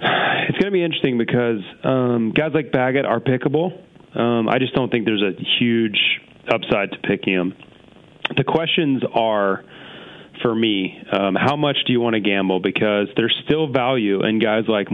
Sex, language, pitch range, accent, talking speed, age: male, English, 105-125 Hz, American, 175 wpm, 30-49